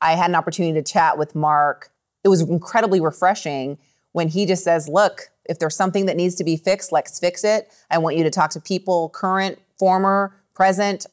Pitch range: 155-185 Hz